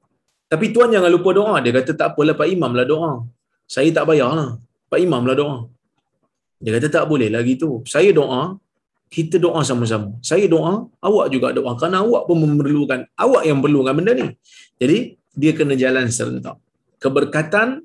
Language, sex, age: Malayalam, male, 20-39